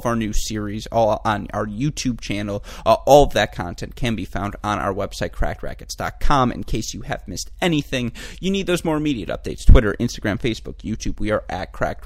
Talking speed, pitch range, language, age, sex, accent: 205 wpm, 100-120 Hz, English, 30-49, male, American